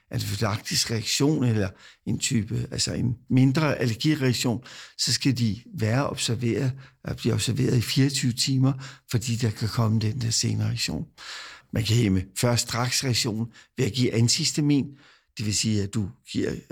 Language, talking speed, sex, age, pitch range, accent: Danish, 160 wpm, male, 60-79, 115-140 Hz, native